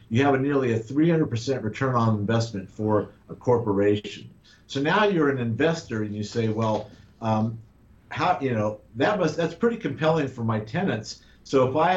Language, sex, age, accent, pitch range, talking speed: English, male, 50-69, American, 105-135 Hz, 180 wpm